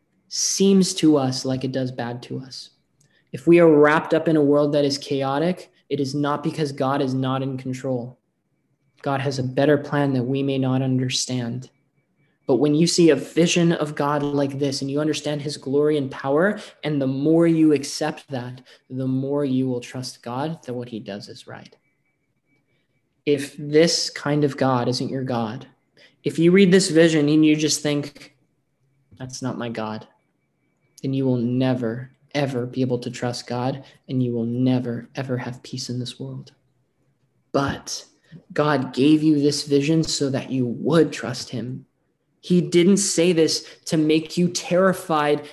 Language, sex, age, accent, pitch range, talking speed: English, male, 20-39, American, 130-160 Hz, 180 wpm